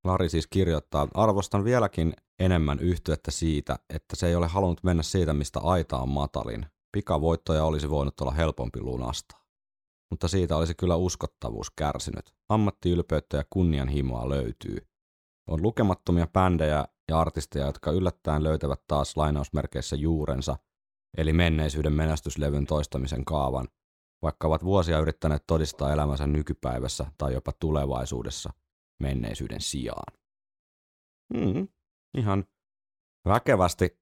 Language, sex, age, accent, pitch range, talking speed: Finnish, male, 30-49, native, 70-90 Hz, 115 wpm